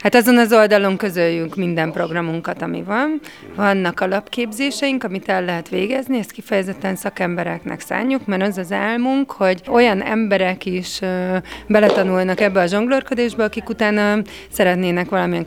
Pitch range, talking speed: 180-220 Hz, 140 wpm